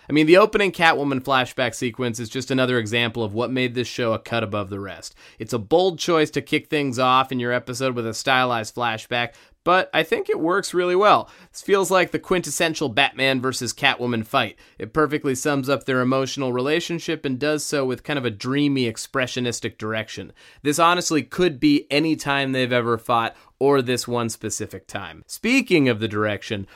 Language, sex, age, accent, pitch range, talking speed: English, male, 30-49, American, 115-145 Hz, 195 wpm